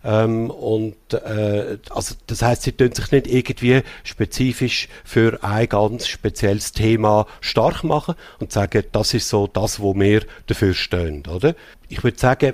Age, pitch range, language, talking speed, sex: 50-69, 100-125 Hz, German, 160 wpm, male